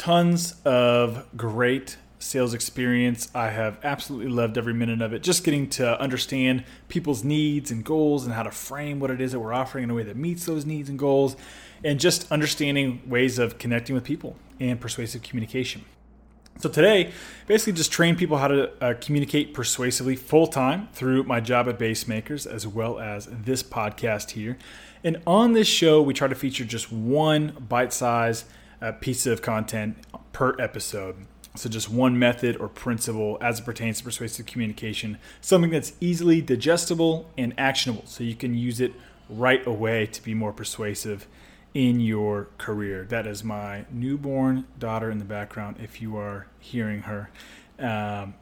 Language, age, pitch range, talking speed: English, 20-39, 110-140 Hz, 170 wpm